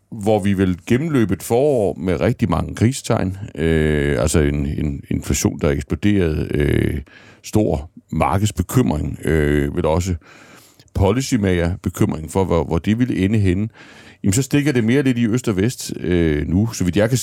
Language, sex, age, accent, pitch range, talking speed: Danish, male, 60-79, native, 85-115 Hz, 165 wpm